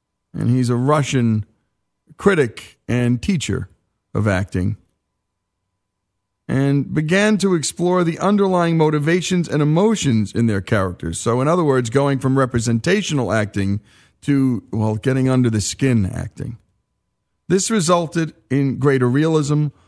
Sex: male